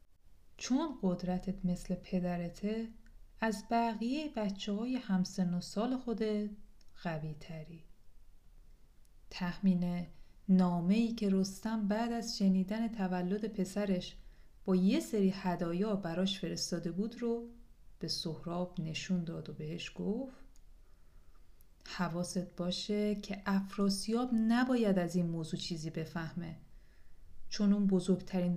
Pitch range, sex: 170-225 Hz, female